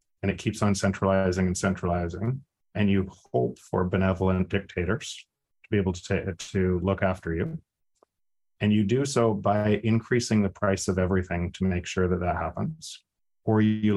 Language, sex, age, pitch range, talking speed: English, male, 40-59, 90-100 Hz, 175 wpm